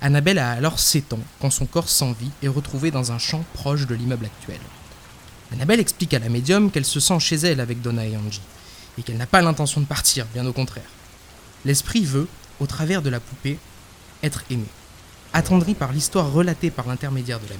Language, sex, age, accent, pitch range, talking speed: French, male, 20-39, French, 115-150 Hz, 205 wpm